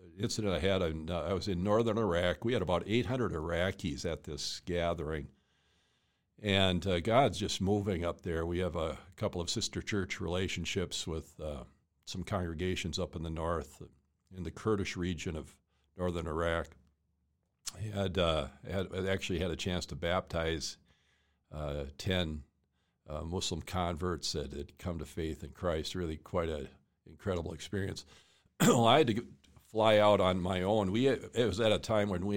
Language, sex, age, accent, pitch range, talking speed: English, male, 60-79, American, 85-100 Hz, 175 wpm